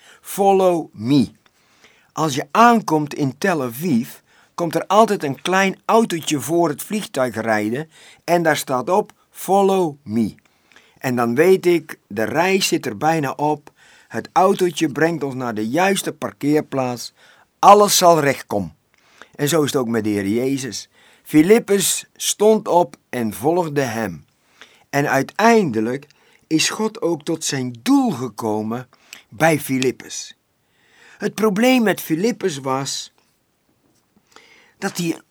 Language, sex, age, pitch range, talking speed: Dutch, male, 50-69, 135-195 Hz, 135 wpm